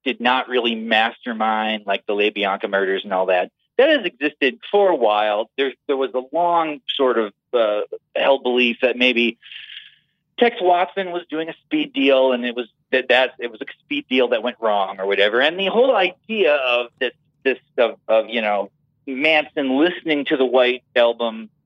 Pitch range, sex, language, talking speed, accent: 115-180 Hz, male, English, 190 wpm, American